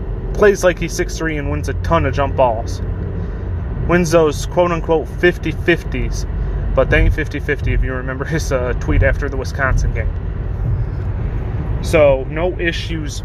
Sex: male